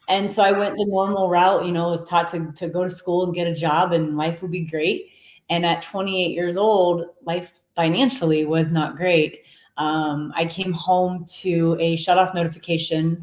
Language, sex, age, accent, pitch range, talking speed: English, female, 20-39, American, 160-180 Hz, 195 wpm